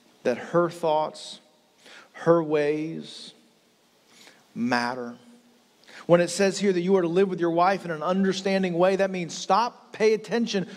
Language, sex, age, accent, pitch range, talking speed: English, male, 40-59, American, 145-195 Hz, 150 wpm